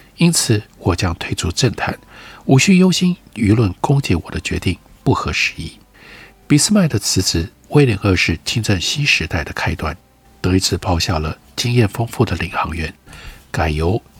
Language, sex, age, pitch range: Chinese, male, 50-69, 85-125 Hz